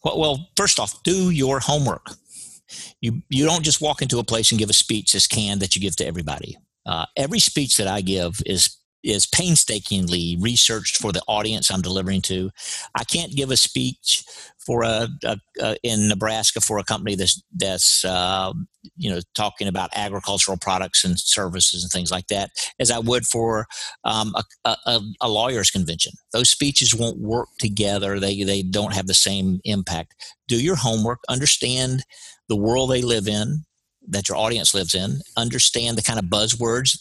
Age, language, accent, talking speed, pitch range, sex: 50-69, English, American, 180 wpm, 100-125 Hz, male